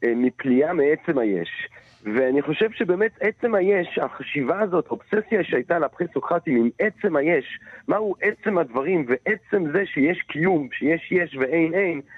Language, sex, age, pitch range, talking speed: Hebrew, male, 40-59, 145-205 Hz, 135 wpm